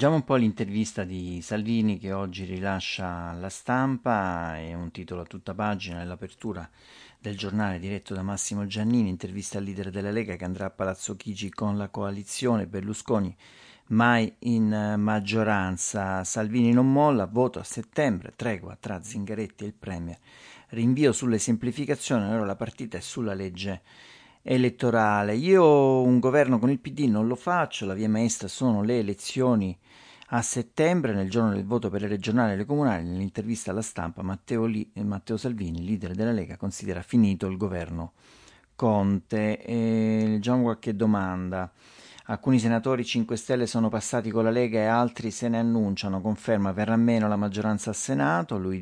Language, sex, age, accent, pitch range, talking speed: Italian, male, 40-59, native, 95-120 Hz, 160 wpm